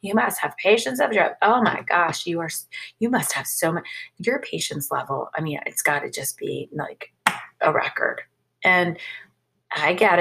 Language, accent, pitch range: English, American, 160-205 Hz